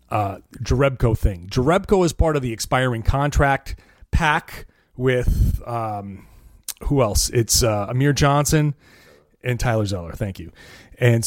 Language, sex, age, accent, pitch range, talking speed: English, male, 30-49, American, 110-145 Hz, 135 wpm